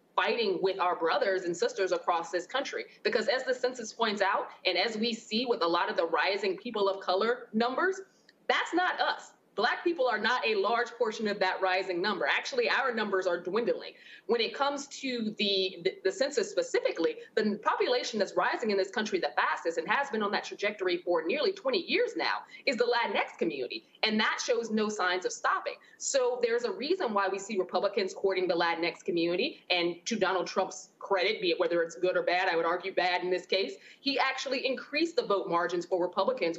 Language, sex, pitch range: English, female, 185-295 Hz